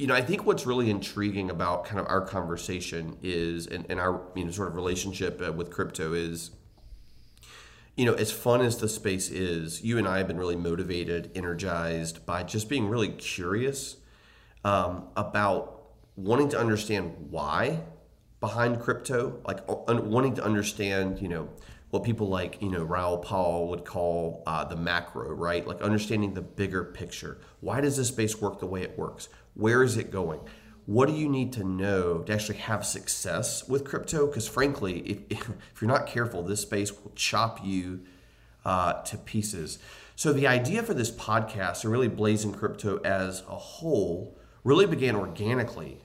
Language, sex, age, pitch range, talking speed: English, male, 30-49, 90-115 Hz, 170 wpm